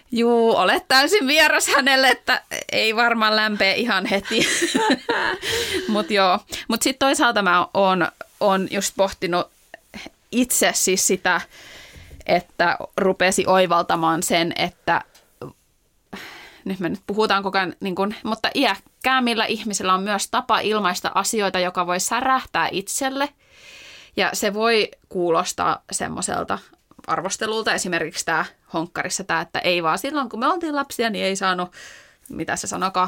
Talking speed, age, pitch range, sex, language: 125 wpm, 20-39, 180-230 Hz, female, Finnish